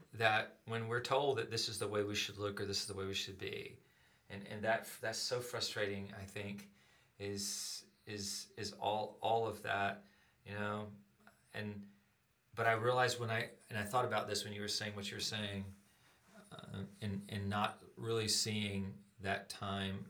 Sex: male